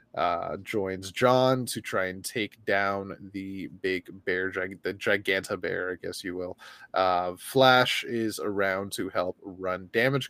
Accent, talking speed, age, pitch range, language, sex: American, 150 wpm, 20-39, 100-125 Hz, English, male